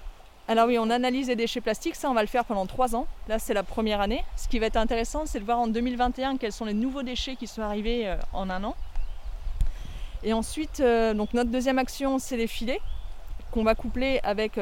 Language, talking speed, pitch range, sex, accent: French, 220 wpm, 215-255 Hz, female, French